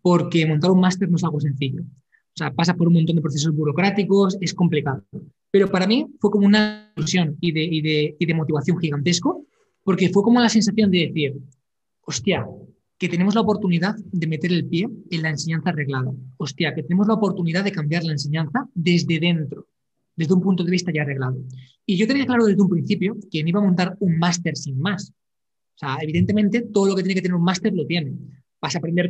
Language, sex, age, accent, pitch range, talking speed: Spanish, male, 20-39, Spanish, 155-200 Hz, 210 wpm